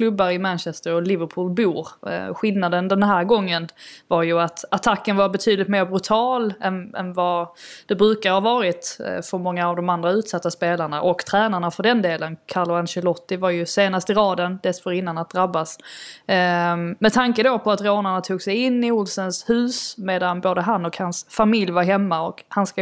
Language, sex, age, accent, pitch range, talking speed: Swedish, female, 20-39, native, 180-215 Hz, 185 wpm